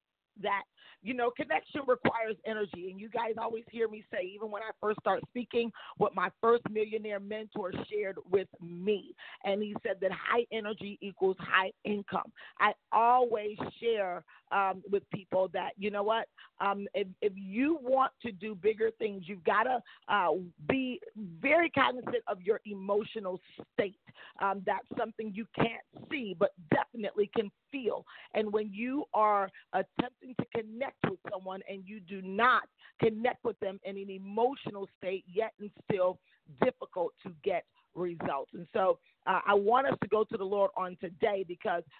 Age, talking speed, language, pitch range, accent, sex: 40-59, 165 wpm, English, 195-235 Hz, American, female